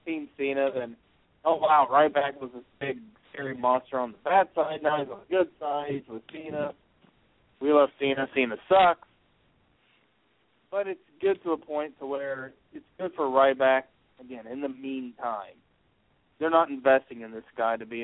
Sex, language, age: male, English, 30-49